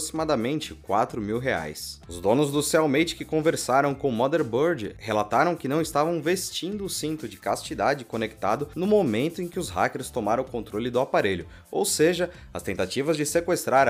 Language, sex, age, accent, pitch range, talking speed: Portuguese, male, 20-39, Brazilian, 110-170 Hz, 170 wpm